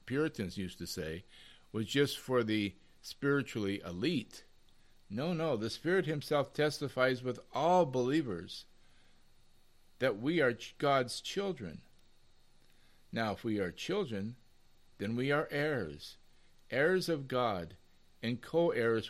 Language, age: English, 50-69